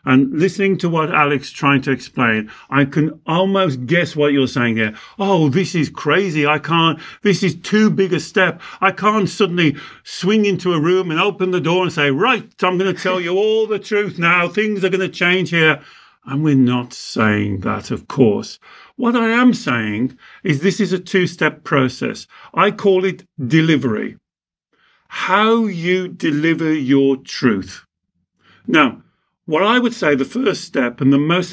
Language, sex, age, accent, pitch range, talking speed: English, male, 50-69, British, 135-190 Hz, 180 wpm